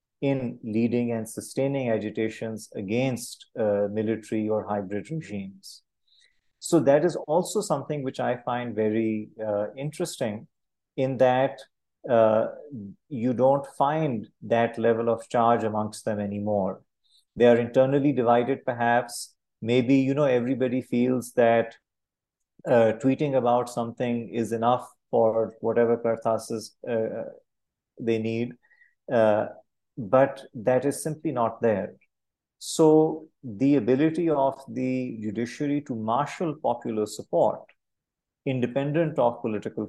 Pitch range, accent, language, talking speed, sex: 110-135 Hz, Indian, English, 120 wpm, male